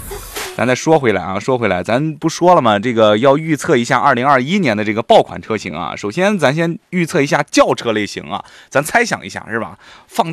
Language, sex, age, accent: Chinese, male, 20-39, native